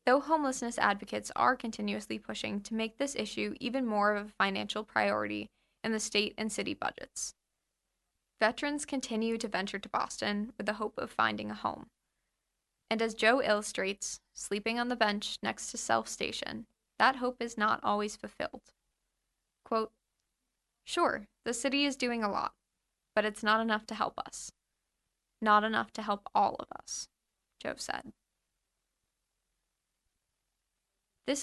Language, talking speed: English, 150 wpm